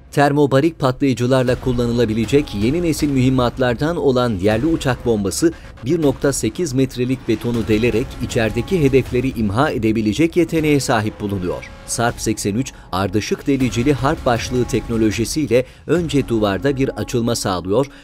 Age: 40-59